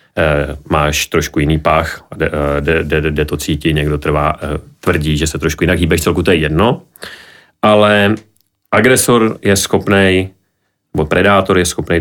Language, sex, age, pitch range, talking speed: Czech, male, 30-49, 80-95 Hz, 145 wpm